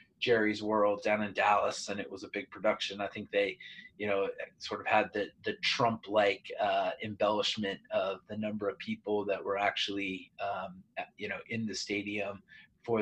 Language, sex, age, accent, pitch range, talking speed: English, male, 30-49, American, 105-130 Hz, 180 wpm